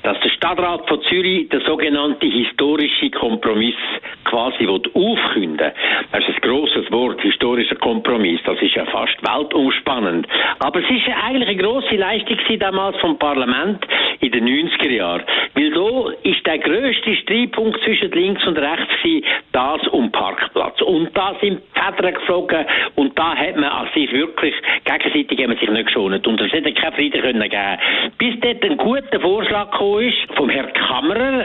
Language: German